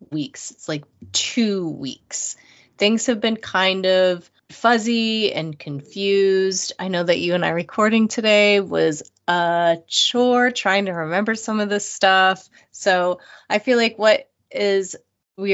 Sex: female